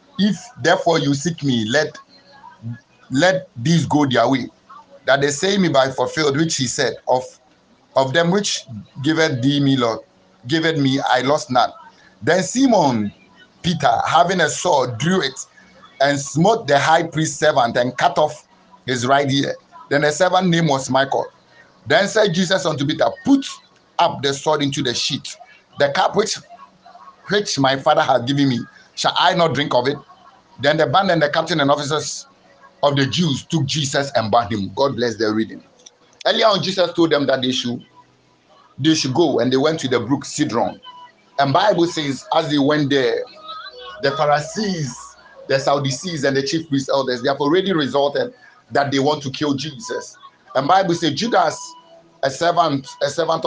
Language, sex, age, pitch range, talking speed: English, male, 50-69, 135-170 Hz, 175 wpm